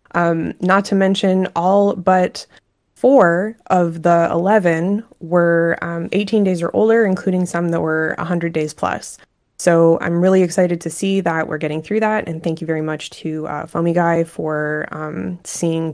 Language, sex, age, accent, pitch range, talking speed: English, female, 20-39, American, 165-200 Hz, 175 wpm